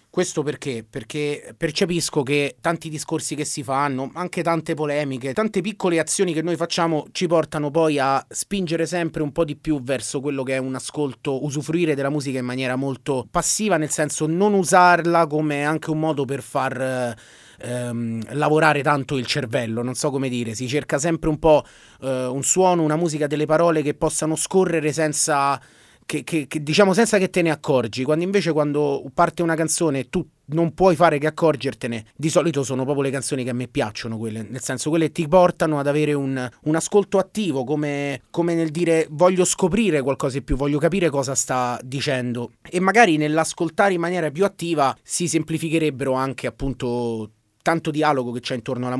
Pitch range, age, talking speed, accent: 135-165 Hz, 30-49, 185 wpm, native